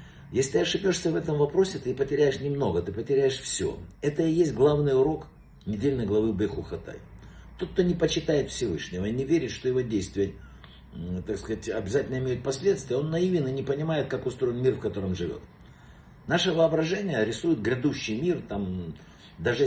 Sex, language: male, Russian